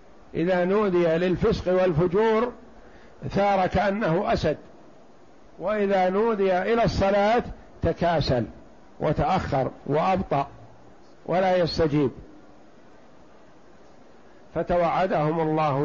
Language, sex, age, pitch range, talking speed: Arabic, male, 50-69, 160-195 Hz, 70 wpm